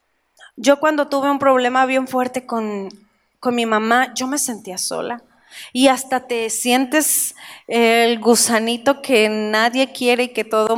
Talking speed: 150 wpm